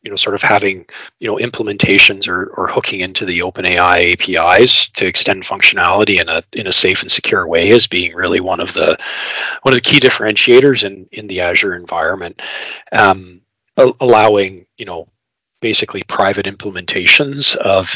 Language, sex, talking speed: English, male, 170 wpm